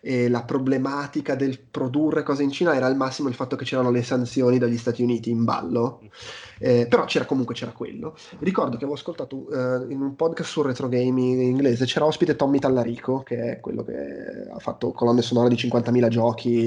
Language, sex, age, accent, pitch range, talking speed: Italian, male, 20-39, native, 120-135 Hz, 200 wpm